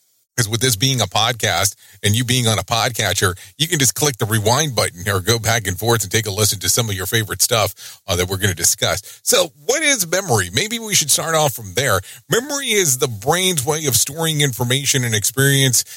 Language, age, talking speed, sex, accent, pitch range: English, 40-59, 230 wpm, male, American, 110-140 Hz